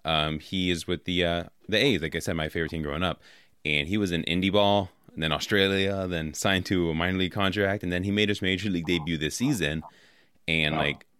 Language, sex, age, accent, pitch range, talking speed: English, male, 20-39, American, 80-95 Hz, 235 wpm